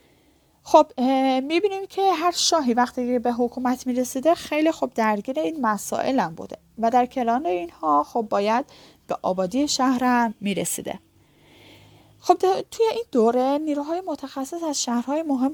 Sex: female